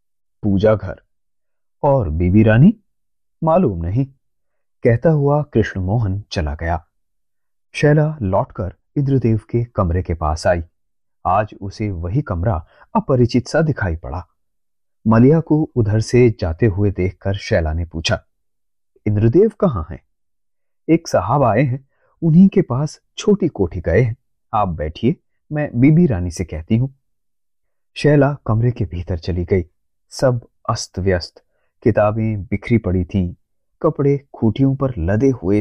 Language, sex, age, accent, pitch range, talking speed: Hindi, male, 30-49, native, 95-135 Hz, 130 wpm